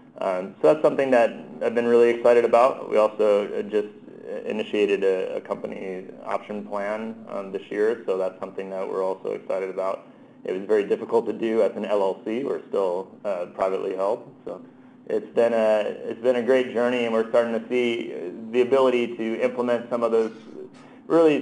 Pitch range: 110-135 Hz